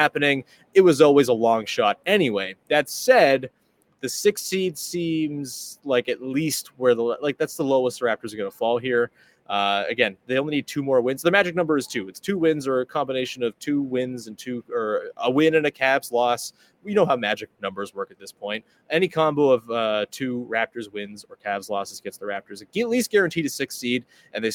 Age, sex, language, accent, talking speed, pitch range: 20-39, male, English, American, 220 wpm, 115-145 Hz